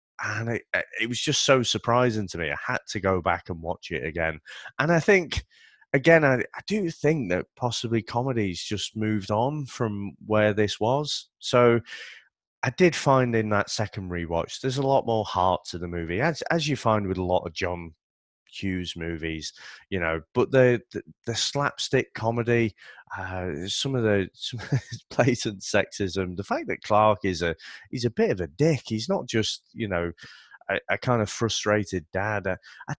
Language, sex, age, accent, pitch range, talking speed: English, male, 30-49, British, 90-125 Hz, 185 wpm